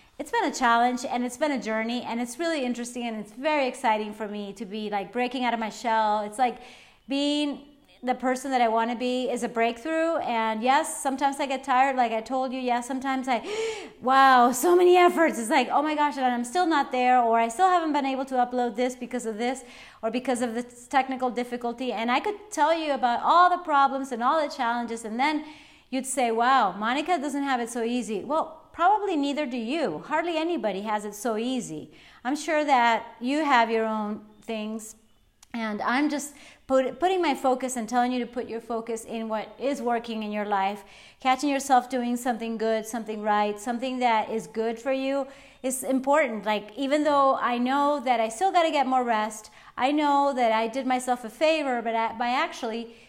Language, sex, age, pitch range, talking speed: English, female, 30-49, 230-280 Hz, 210 wpm